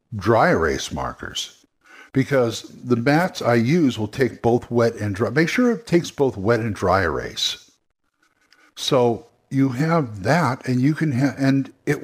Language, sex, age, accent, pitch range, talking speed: English, male, 60-79, American, 110-140 Hz, 165 wpm